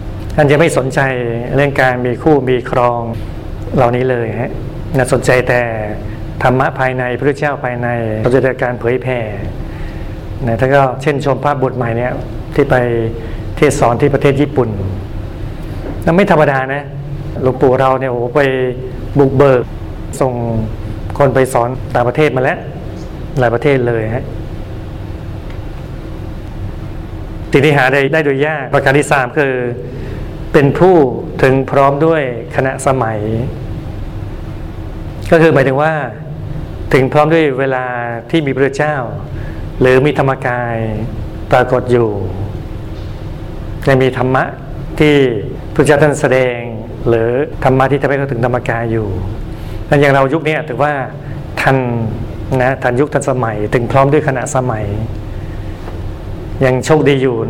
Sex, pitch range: male, 110-140 Hz